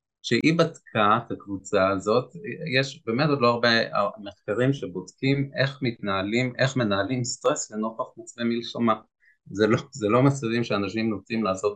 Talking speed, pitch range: 140 wpm, 100-140 Hz